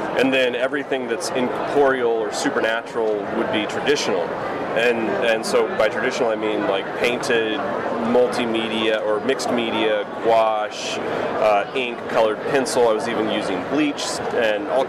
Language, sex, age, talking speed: English, male, 30-49, 140 wpm